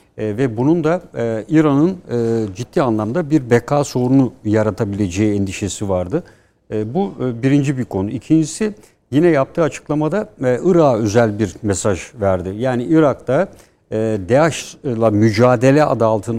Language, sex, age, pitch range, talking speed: Turkish, male, 60-79, 115-160 Hz, 135 wpm